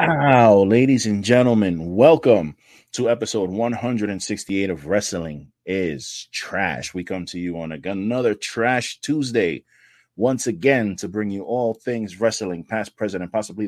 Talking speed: 140 wpm